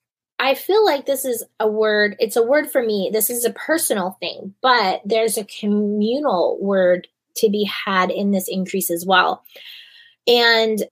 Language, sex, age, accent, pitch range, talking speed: English, female, 20-39, American, 185-230 Hz, 170 wpm